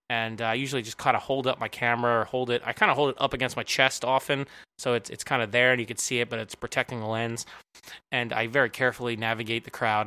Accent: American